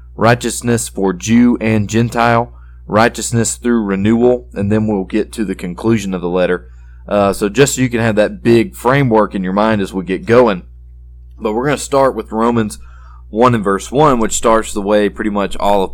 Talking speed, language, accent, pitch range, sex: 205 wpm, English, American, 90-115 Hz, male